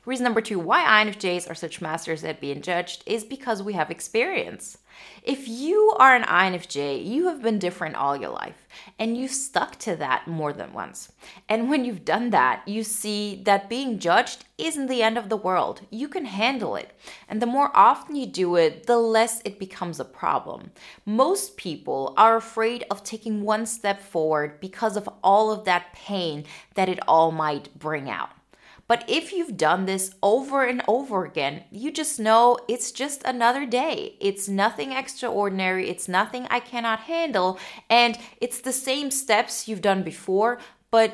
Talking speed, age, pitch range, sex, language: 180 wpm, 20-39, 180-245 Hz, female, English